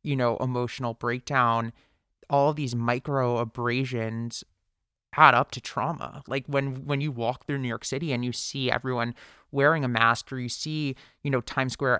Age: 20-39